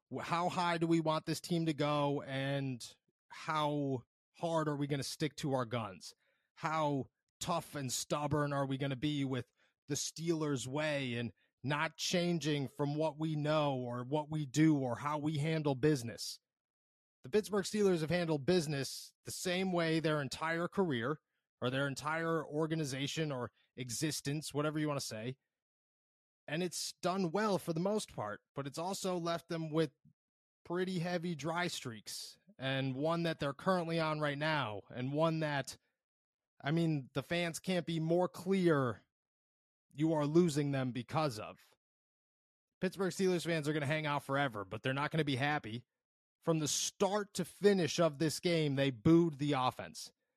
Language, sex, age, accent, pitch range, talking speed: English, male, 30-49, American, 135-165 Hz, 170 wpm